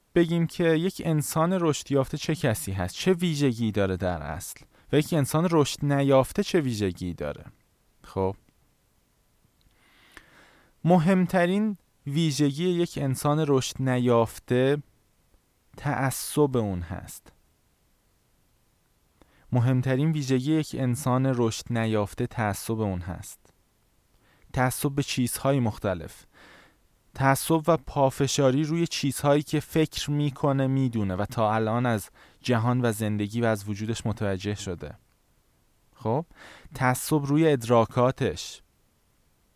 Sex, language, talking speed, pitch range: male, Persian, 105 wpm, 110-155 Hz